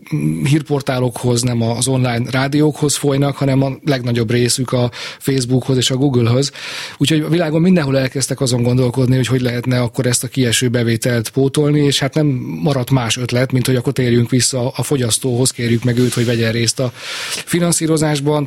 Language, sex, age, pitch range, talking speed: Hungarian, male, 30-49, 120-140 Hz, 170 wpm